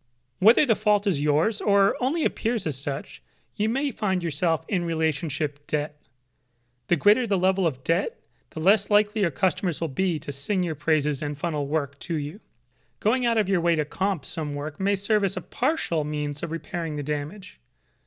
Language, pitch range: English, 150-200 Hz